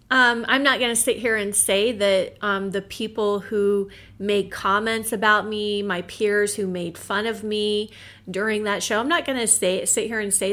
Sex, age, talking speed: female, 30-49, 205 wpm